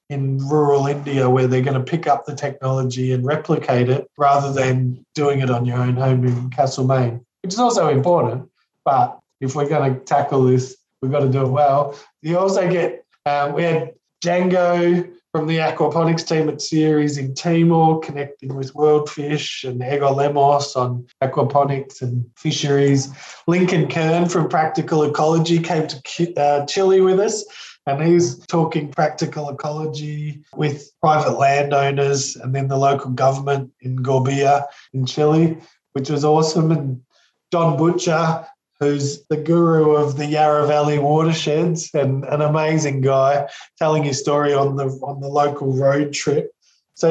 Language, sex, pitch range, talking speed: English, male, 140-165 Hz, 160 wpm